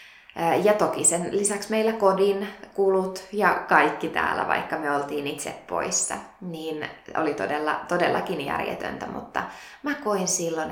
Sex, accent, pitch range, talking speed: female, native, 160-195 Hz, 135 wpm